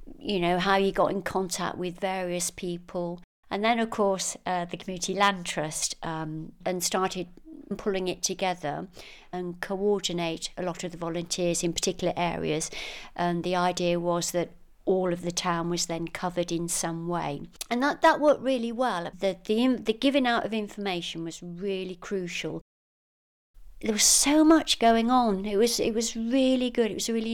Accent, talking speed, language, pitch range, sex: British, 180 wpm, English, 175-210 Hz, female